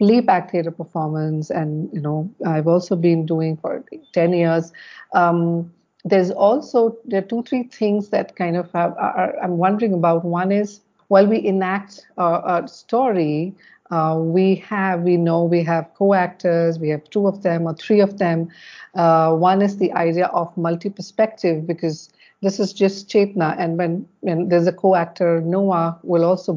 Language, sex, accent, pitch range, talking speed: English, female, Indian, 170-205 Hz, 175 wpm